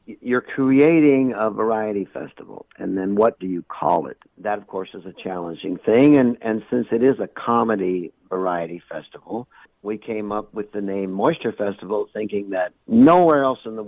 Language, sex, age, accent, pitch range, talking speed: English, male, 60-79, American, 100-125 Hz, 180 wpm